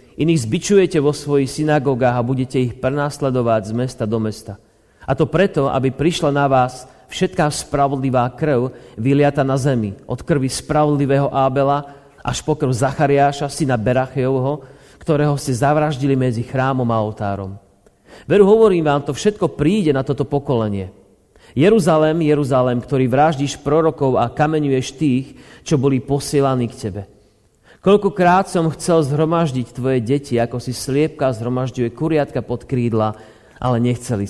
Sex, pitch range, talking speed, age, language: male, 115-150 Hz, 140 wpm, 40-59, Slovak